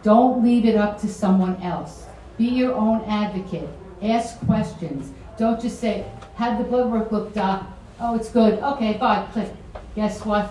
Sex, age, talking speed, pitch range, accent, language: female, 50-69, 170 wpm, 180-215 Hz, American, English